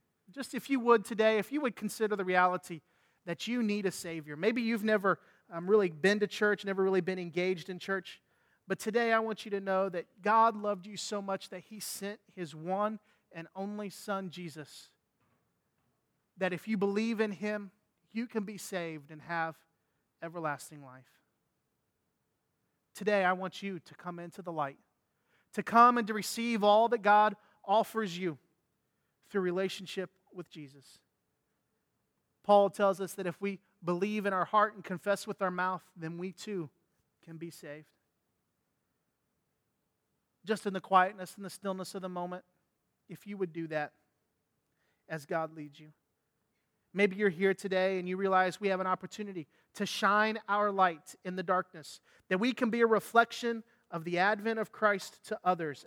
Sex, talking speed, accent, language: male, 170 wpm, American, English